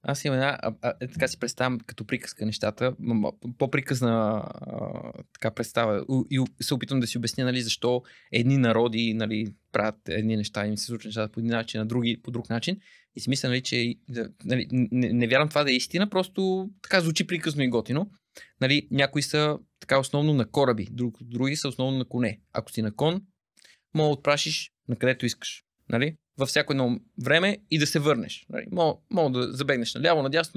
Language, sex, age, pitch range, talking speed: Bulgarian, male, 20-39, 120-155 Hz, 190 wpm